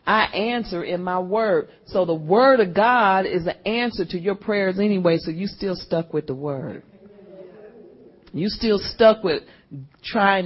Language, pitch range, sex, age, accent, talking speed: English, 155-200 Hz, female, 40-59, American, 165 wpm